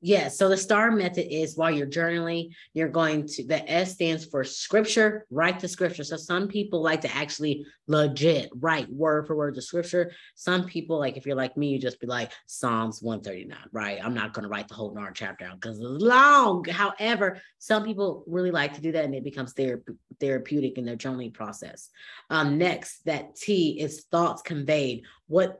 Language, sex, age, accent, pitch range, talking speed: English, female, 20-39, American, 140-170 Hz, 195 wpm